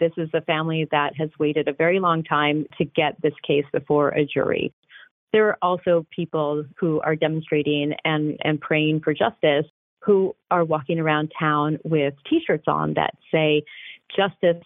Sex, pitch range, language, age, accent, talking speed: female, 155-180 Hz, English, 30-49, American, 170 wpm